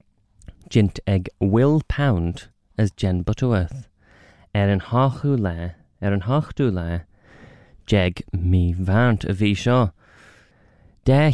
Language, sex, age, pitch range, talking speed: English, male, 20-39, 95-110 Hz, 100 wpm